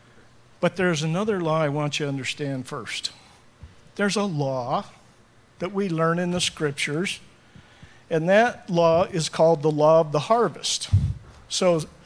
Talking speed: 150 wpm